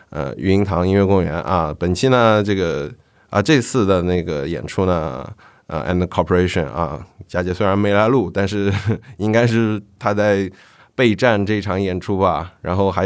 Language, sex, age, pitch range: Chinese, male, 20-39, 90-110 Hz